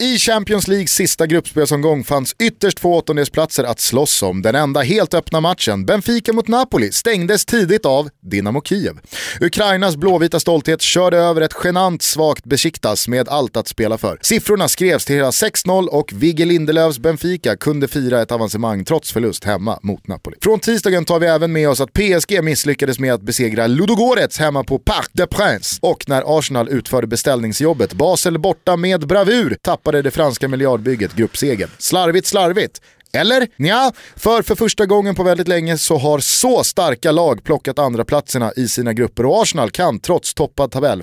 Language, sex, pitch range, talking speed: Swedish, male, 130-185 Hz, 175 wpm